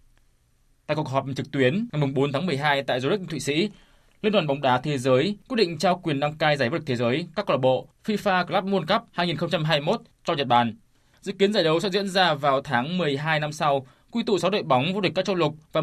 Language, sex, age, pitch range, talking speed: Vietnamese, male, 20-39, 140-190 Hz, 245 wpm